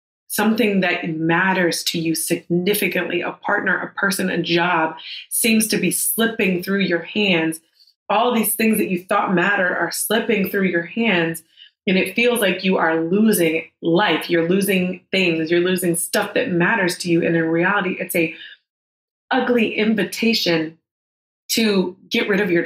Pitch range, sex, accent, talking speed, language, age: 175-215 Hz, female, American, 160 wpm, English, 20-39